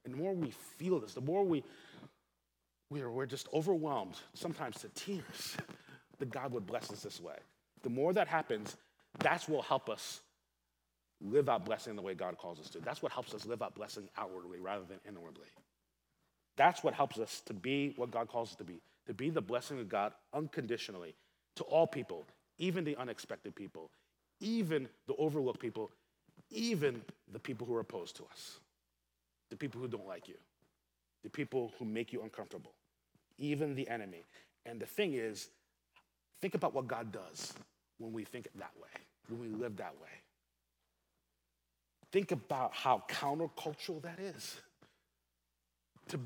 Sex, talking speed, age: male, 170 wpm, 30-49